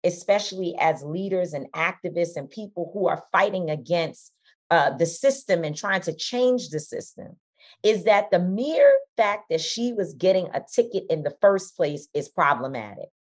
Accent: American